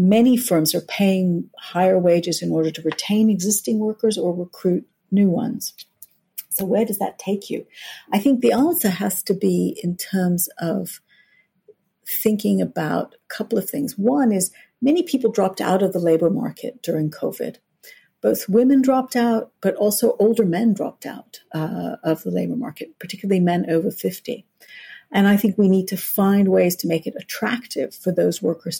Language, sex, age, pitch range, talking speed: English, female, 50-69, 175-230 Hz, 175 wpm